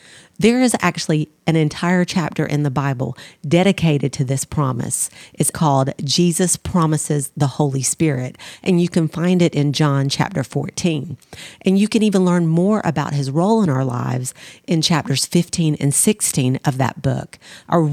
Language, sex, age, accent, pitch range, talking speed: English, female, 40-59, American, 145-185 Hz, 165 wpm